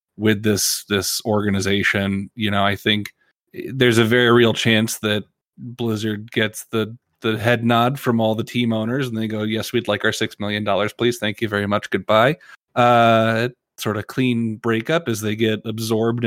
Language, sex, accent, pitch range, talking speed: English, male, American, 105-125 Hz, 185 wpm